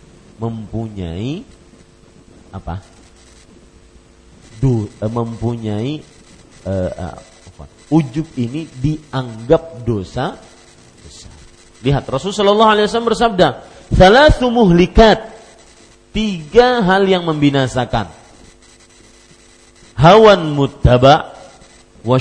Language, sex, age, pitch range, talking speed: Malay, male, 40-59, 100-165 Hz, 70 wpm